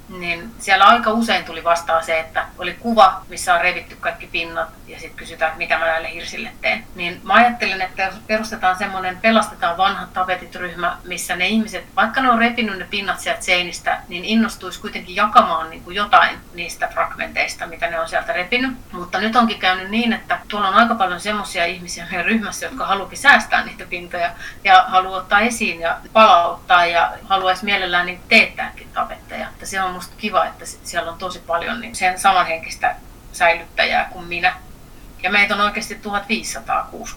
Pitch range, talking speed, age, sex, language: 175-210 Hz, 175 wpm, 30-49, female, Finnish